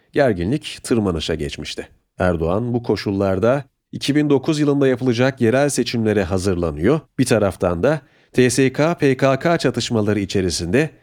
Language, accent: Turkish, native